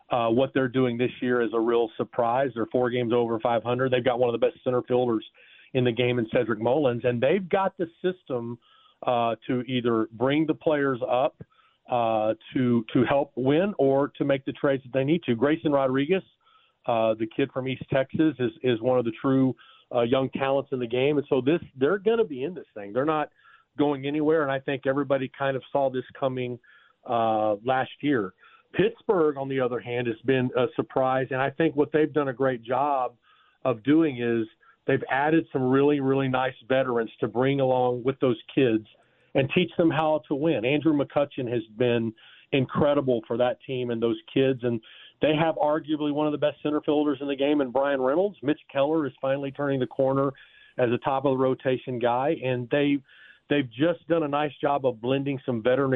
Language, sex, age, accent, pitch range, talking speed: English, male, 40-59, American, 125-145 Hz, 210 wpm